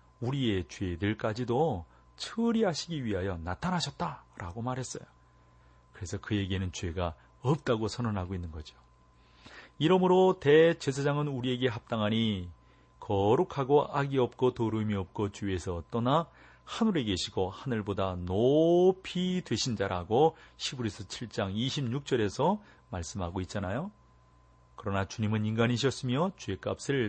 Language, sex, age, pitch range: Korean, male, 40-59, 90-140 Hz